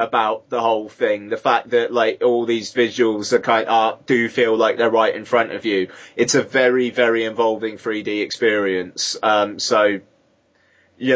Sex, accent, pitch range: male, British, 115-135 Hz